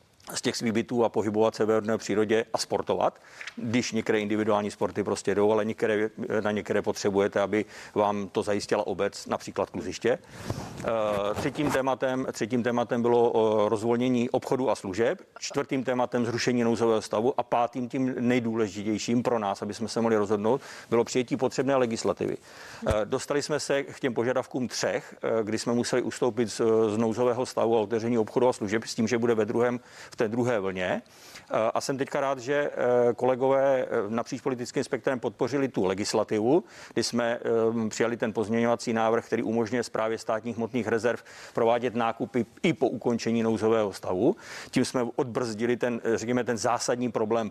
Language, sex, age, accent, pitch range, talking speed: Czech, male, 50-69, native, 110-125 Hz, 155 wpm